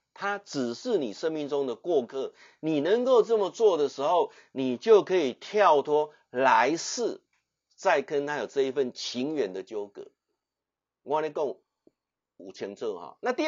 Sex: male